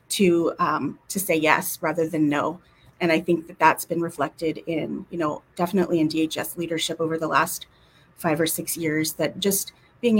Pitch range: 160-175 Hz